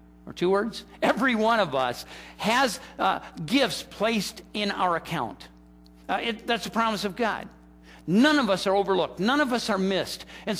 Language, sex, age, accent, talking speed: English, male, 50-69, American, 175 wpm